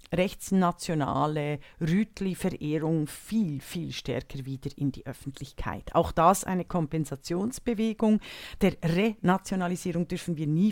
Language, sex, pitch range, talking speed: German, female, 155-190 Hz, 100 wpm